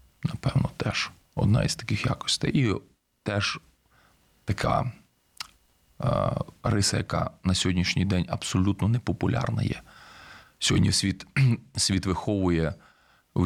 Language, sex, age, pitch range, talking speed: Ukrainian, male, 30-49, 85-100 Hz, 100 wpm